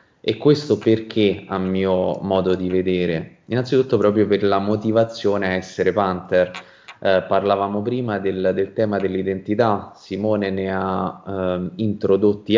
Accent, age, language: native, 20-39, Italian